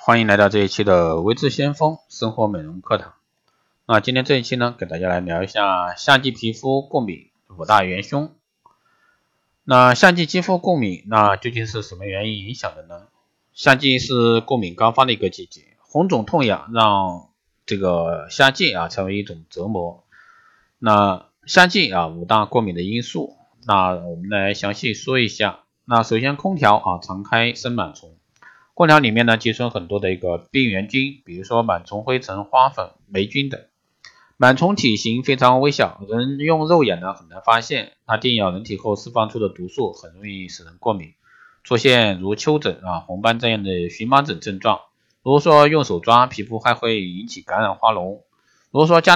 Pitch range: 95-130 Hz